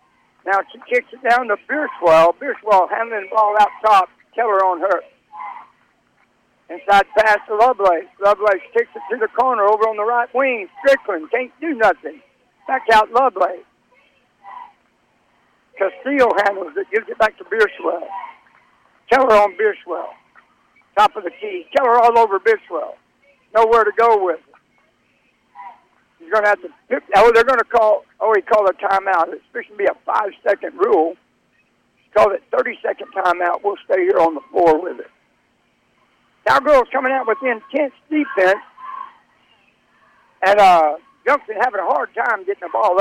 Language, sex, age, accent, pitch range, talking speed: English, male, 60-79, American, 200-285 Hz, 160 wpm